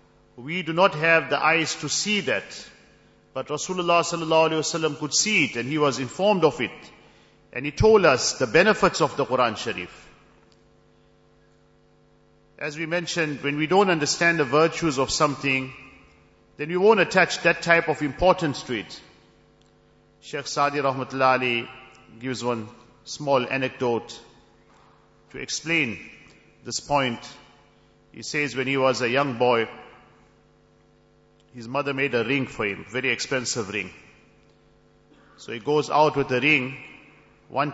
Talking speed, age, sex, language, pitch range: 140 wpm, 50-69, male, English, 130-155 Hz